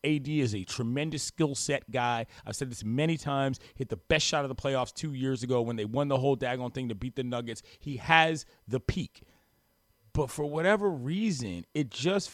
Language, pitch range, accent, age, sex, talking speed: English, 125-160 Hz, American, 30-49, male, 210 wpm